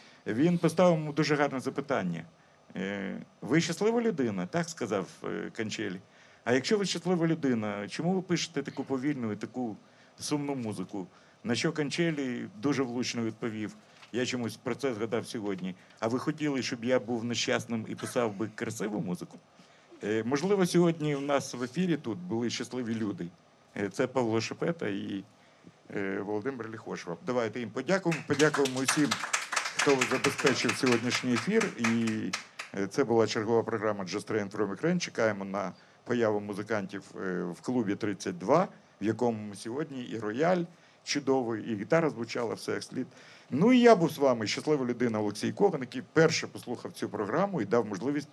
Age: 50-69